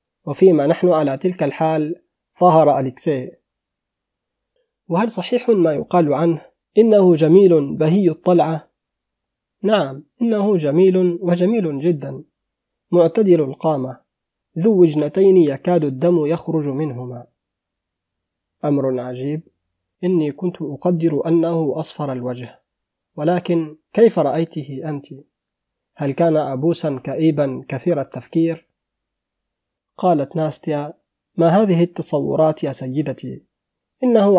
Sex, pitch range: male, 140-175 Hz